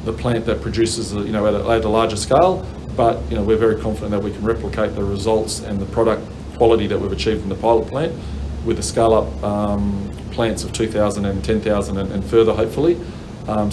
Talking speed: 215 wpm